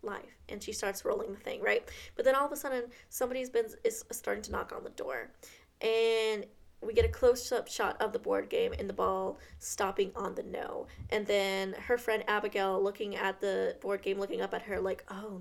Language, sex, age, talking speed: English, female, 20-39, 220 wpm